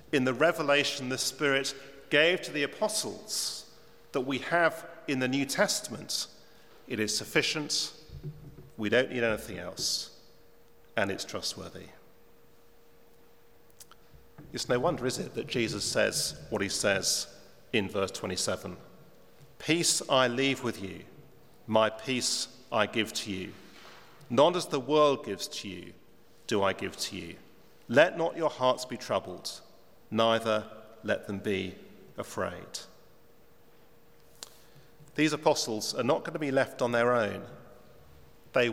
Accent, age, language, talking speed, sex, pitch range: British, 40-59, English, 135 wpm, male, 110-155 Hz